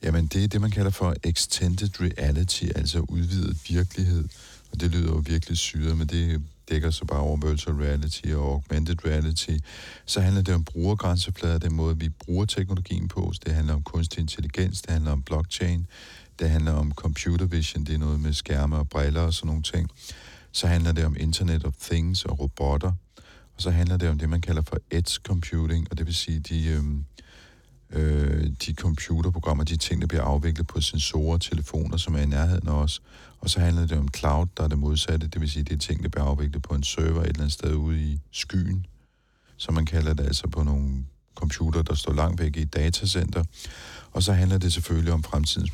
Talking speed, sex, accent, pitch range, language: 205 wpm, male, native, 75-85 Hz, Danish